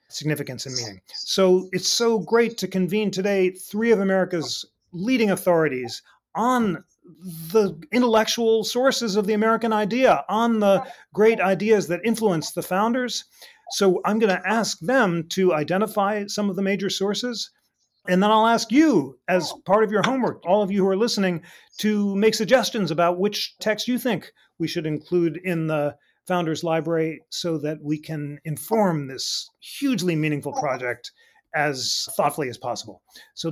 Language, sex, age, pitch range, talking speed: English, male, 40-59, 160-220 Hz, 160 wpm